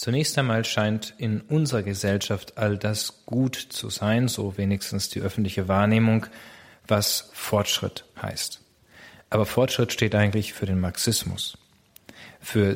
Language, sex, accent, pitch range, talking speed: German, male, German, 100-120 Hz, 125 wpm